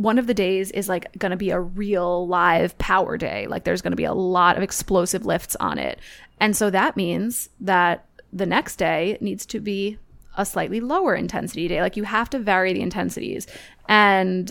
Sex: female